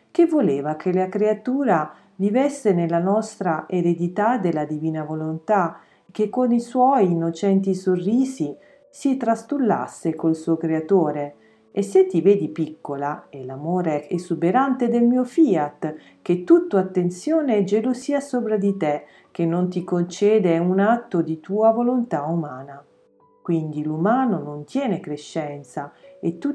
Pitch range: 150-220 Hz